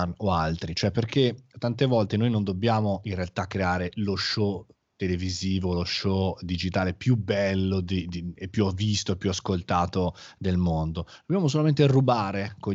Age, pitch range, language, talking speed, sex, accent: 30-49, 95-125 Hz, Italian, 160 wpm, male, native